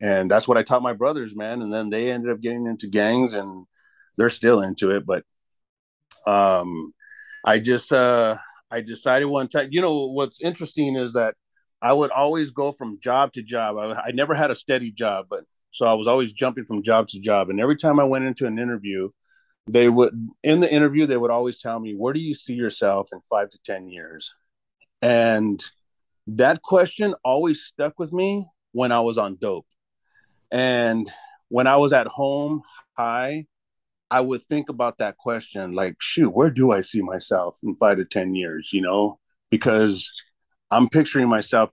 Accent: American